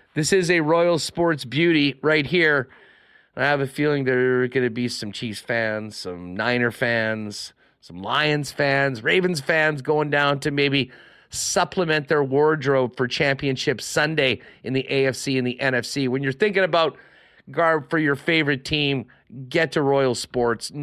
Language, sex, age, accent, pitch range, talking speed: English, male, 30-49, American, 120-155 Hz, 165 wpm